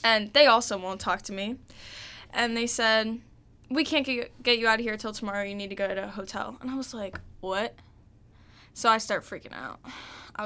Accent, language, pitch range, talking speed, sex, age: American, English, 200-245 Hz, 210 wpm, female, 10-29